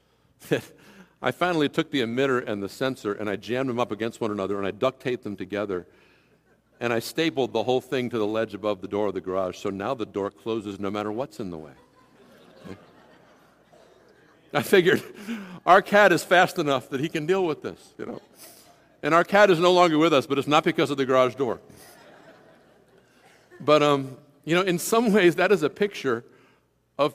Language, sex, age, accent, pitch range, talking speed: English, male, 50-69, American, 125-195 Hz, 205 wpm